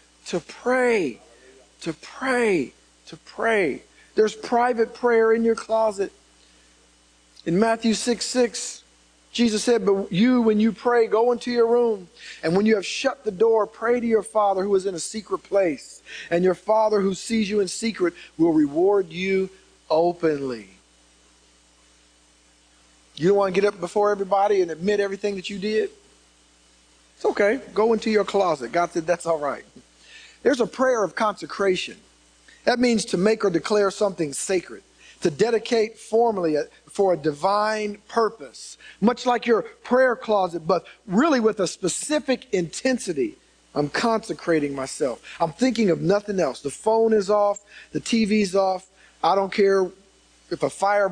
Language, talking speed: English, 155 wpm